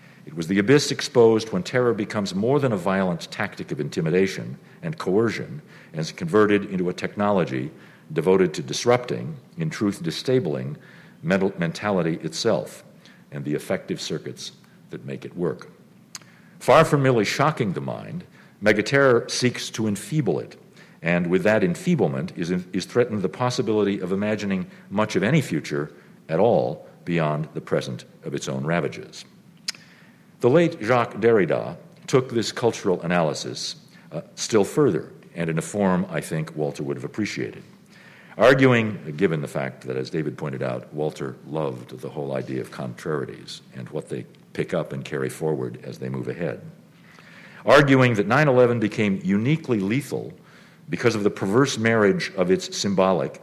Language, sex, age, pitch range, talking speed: English, male, 50-69, 85-130 Hz, 155 wpm